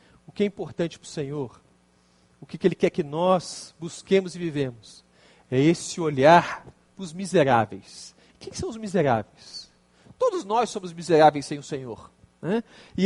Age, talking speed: 40-59, 170 wpm